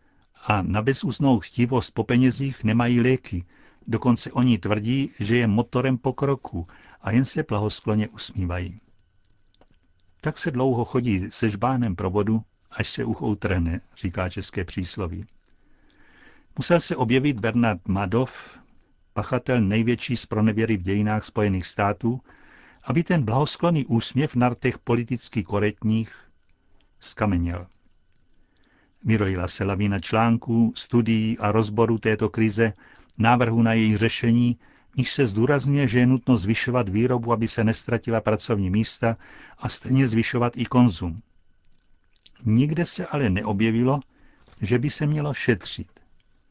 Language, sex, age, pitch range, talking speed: Czech, male, 60-79, 105-125 Hz, 125 wpm